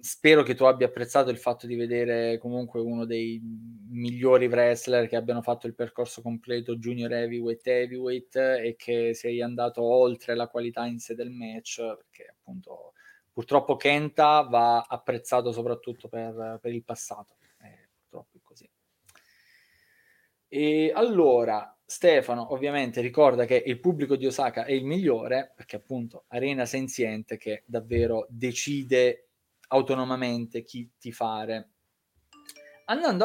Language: Italian